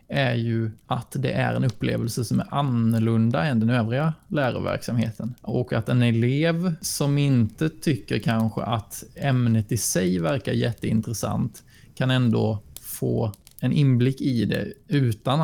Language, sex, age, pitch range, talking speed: Swedish, male, 20-39, 115-140 Hz, 140 wpm